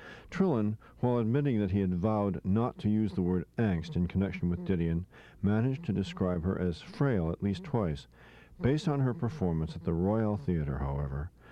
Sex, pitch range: male, 85-110 Hz